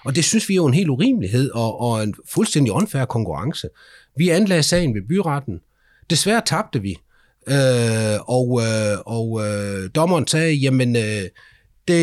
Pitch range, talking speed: 105-150 Hz, 150 wpm